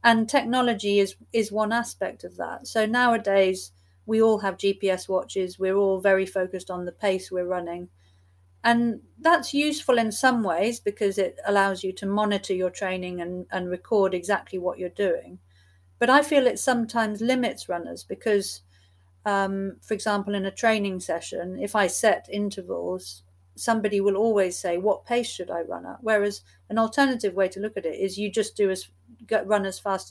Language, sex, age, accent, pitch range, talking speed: English, female, 50-69, British, 180-225 Hz, 180 wpm